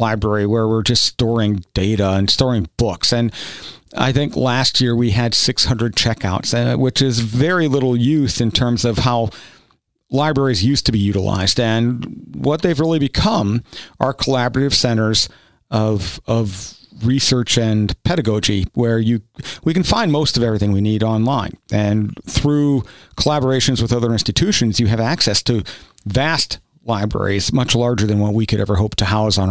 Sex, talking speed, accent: male, 165 wpm, American